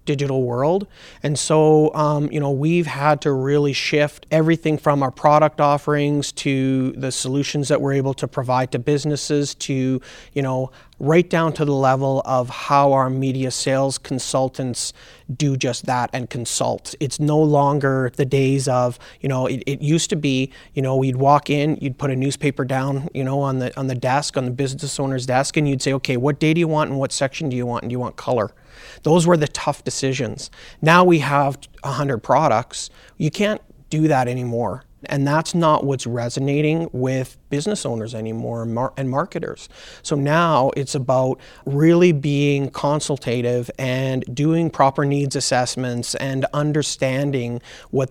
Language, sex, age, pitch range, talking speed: English, male, 30-49, 130-150 Hz, 180 wpm